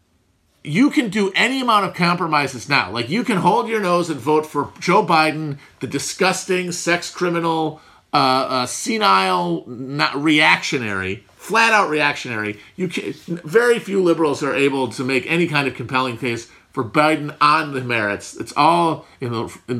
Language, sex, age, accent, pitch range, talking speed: English, male, 40-59, American, 135-185 Hz, 165 wpm